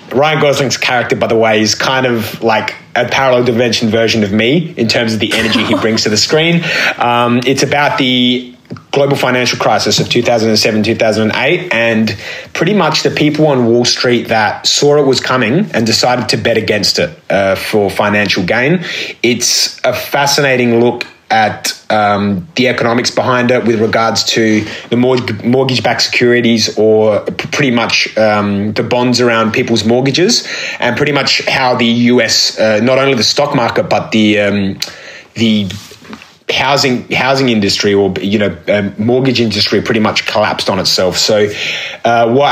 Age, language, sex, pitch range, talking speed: 30-49, English, male, 110-130 Hz, 165 wpm